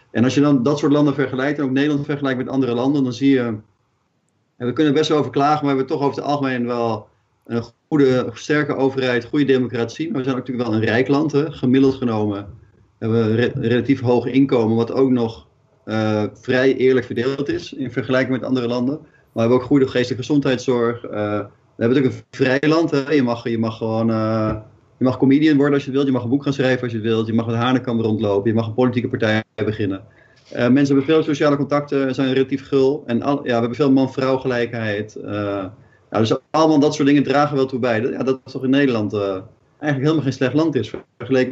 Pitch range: 115-140 Hz